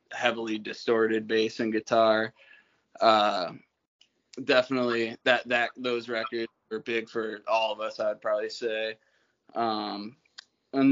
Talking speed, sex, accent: 120 wpm, male, American